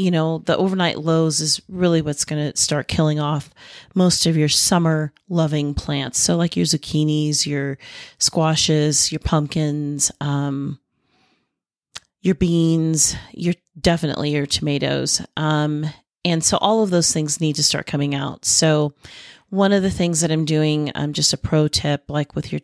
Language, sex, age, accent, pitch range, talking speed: English, female, 30-49, American, 145-165 Hz, 165 wpm